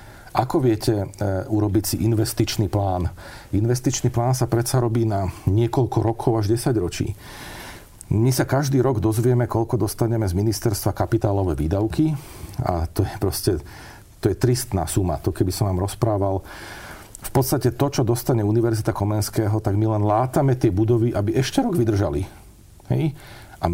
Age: 40-59